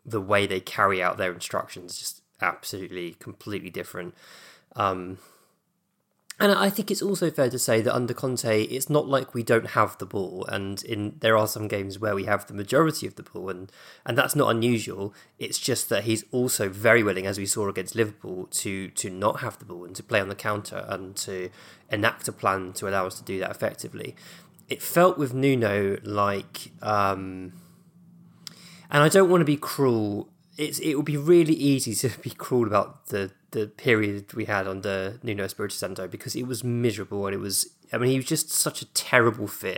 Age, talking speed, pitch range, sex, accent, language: 20-39, 205 wpm, 100-140 Hz, male, British, English